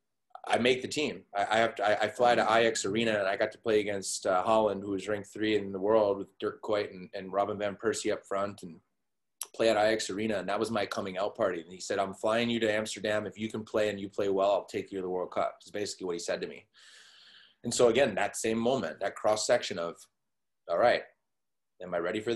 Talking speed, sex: 260 wpm, male